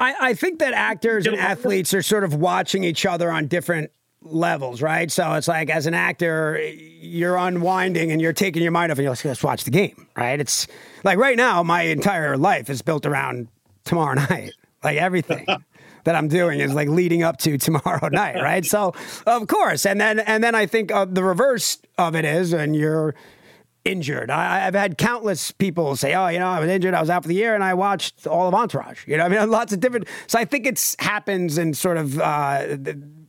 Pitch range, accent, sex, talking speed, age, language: 150-190 Hz, American, male, 215 wpm, 40-59, English